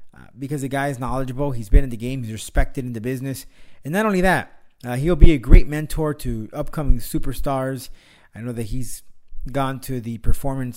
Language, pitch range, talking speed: English, 115-145 Hz, 200 wpm